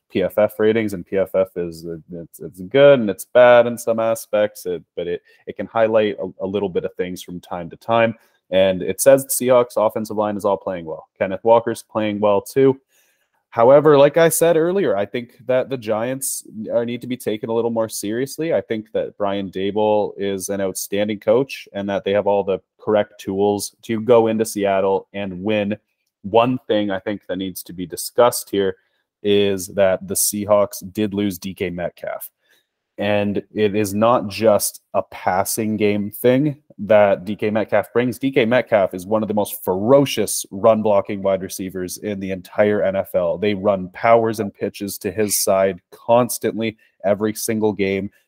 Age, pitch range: 20-39, 100-115 Hz